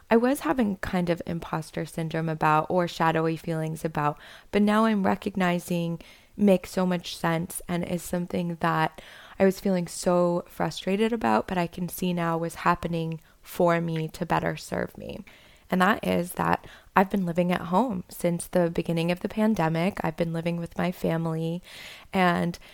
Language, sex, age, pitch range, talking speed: English, female, 20-39, 160-180 Hz, 170 wpm